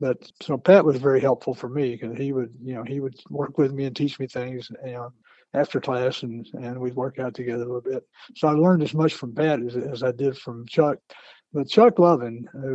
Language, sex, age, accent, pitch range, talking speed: English, male, 60-79, American, 125-150 Hz, 245 wpm